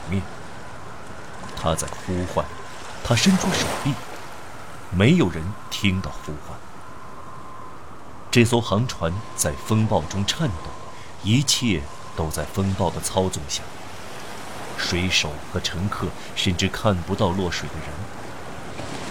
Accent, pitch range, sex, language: native, 85-115 Hz, male, Chinese